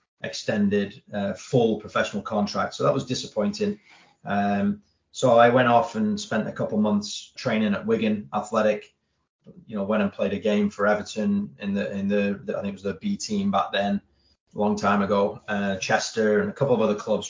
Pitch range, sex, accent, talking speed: 105-145 Hz, male, British, 200 wpm